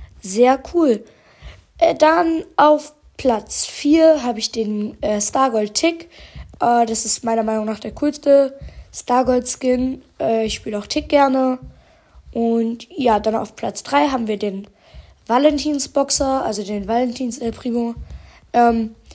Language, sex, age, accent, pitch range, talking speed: German, female, 10-29, German, 230-270 Hz, 130 wpm